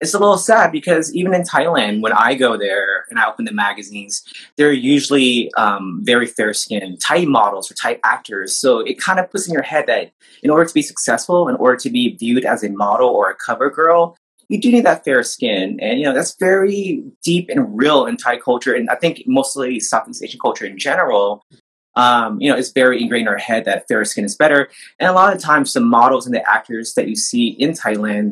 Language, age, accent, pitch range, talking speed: English, 20-39, American, 110-170 Hz, 230 wpm